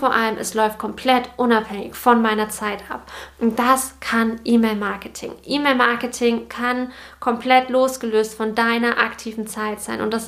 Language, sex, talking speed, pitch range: German, female, 145 wpm, 225-275 Hz